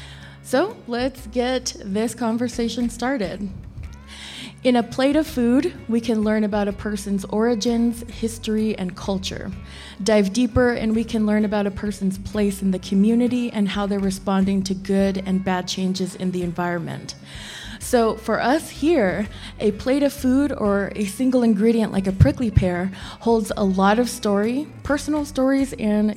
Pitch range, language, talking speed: 190-240 Hz, English, 160 wpm